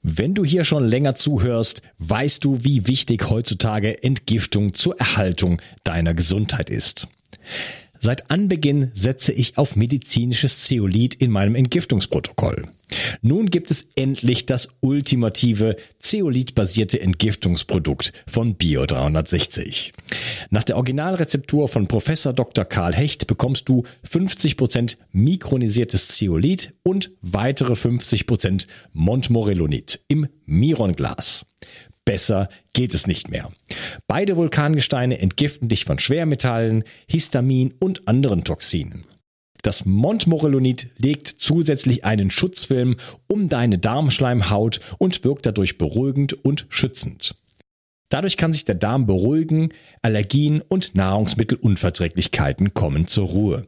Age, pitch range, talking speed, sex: 40-59, 105-145 Hz, 110 wpm, male